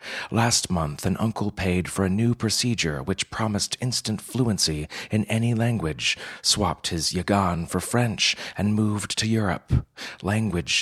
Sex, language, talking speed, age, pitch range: male, English, 145 wpm, 30-49, 85-110 Hz